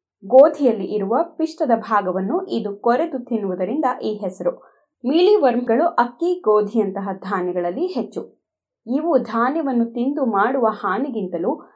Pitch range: 205-285 Hz